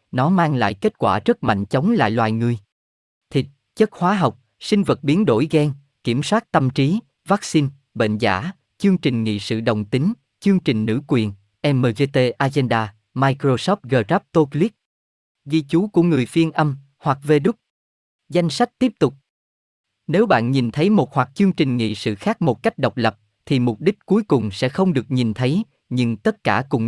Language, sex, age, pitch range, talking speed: Vietnamese, male, 20-39, 110-160 Hz, 185 wpm